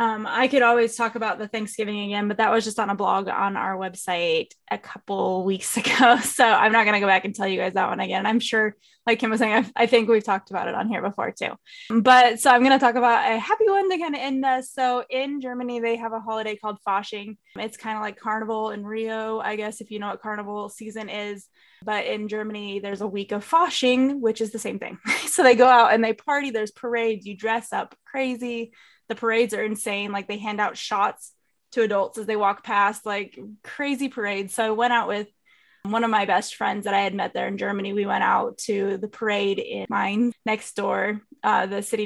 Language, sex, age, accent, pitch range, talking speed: English, female, 20-39, American, 210-245 Hz, 235 wpm